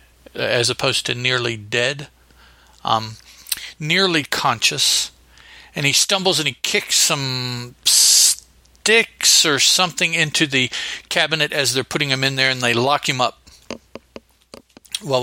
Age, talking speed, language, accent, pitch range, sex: 50-69, 130 wpm, English, American, 115-155 Hz, male